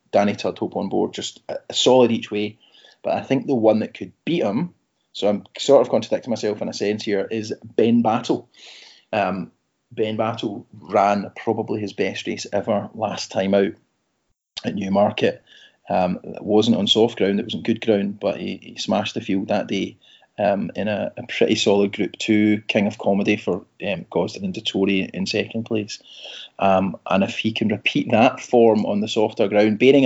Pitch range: 100-110 Hz